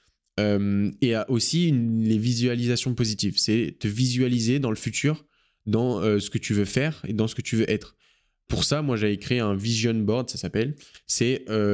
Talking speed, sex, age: 190 wpm, male, 20-39